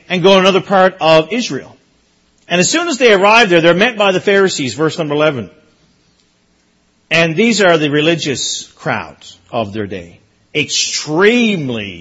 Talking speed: 160 wpm